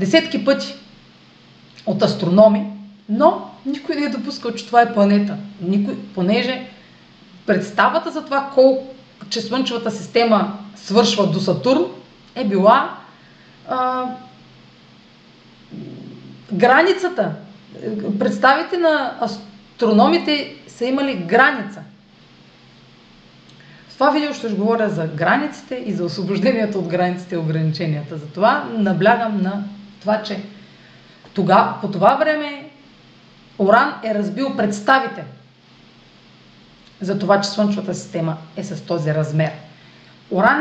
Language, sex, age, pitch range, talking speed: Bulgarian, female, 30-49, 190-255 Hz, 110 wpm